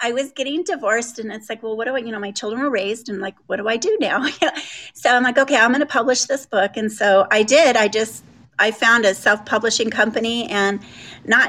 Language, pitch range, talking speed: English, 210-250 Hz, 245 wpm